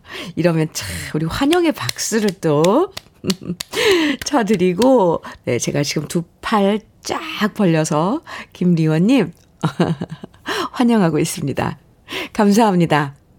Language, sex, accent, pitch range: Korean, female, native, 175-270 Hz